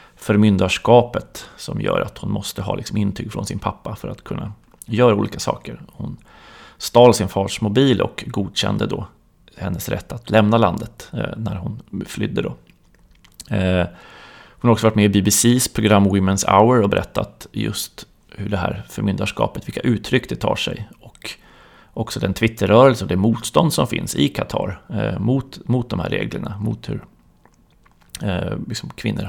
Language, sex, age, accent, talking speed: Swedish, male, 30-49, native, 155 wpm